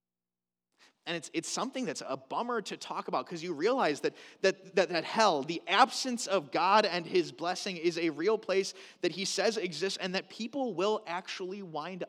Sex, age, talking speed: male, 30-49, 195 wpm